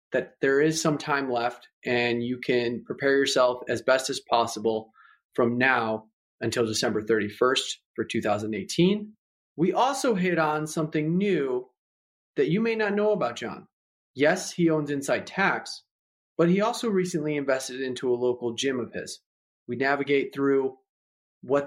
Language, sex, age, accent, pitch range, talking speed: English, male, 30-49, American, 130-170 Hz, 150 wpm